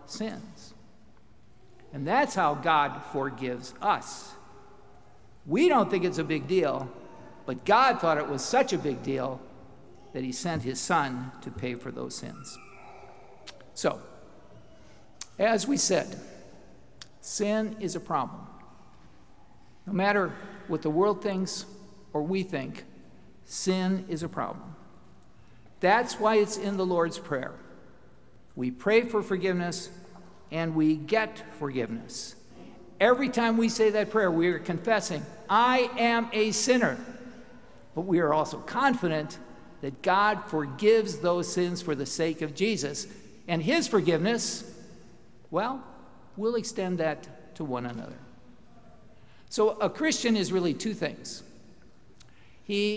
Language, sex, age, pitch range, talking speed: English, male, 50-69, 145-210 Hz, 130 wpm